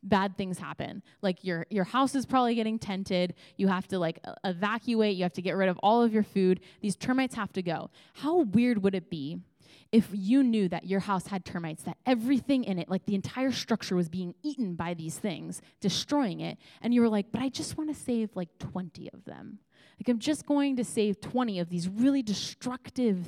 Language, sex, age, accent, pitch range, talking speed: English, female, 20-39, American, 180-230 Hz, 220 wpm